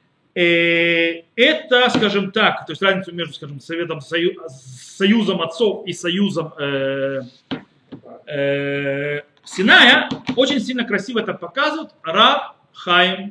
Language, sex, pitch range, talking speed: Russian, male, 140-200 Hz, 105 wpm